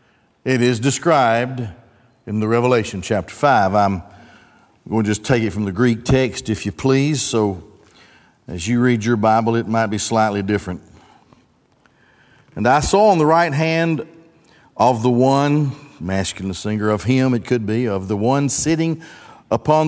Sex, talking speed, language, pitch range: male, 165 wpm, English, 105-135 Hz